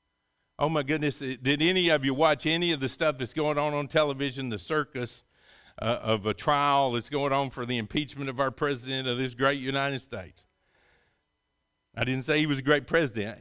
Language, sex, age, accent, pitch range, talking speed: English, male, 50-69, American, 130-170 Hz, 200 wpm